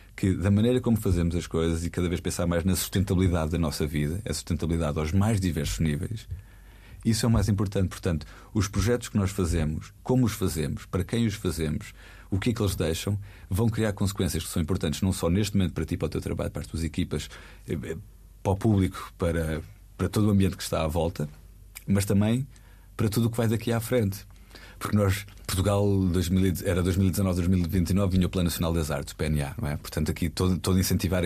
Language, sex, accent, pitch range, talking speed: Portuguese, male, Portuguese, 85-100 Hz, 210 wpm